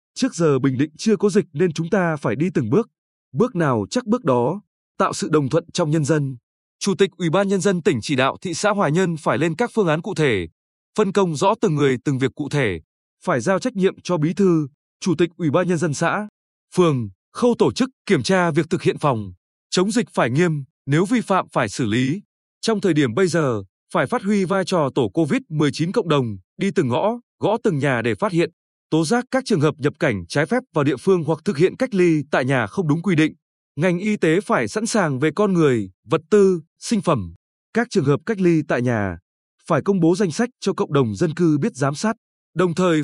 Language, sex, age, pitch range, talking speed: Vietnamese, male, 20-39, 145-200 Hz, 235 wpm